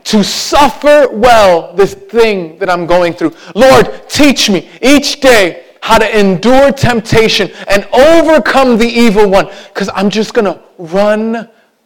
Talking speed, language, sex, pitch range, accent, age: 145 wpm, English, male, 145-220 Hz, American, 30-49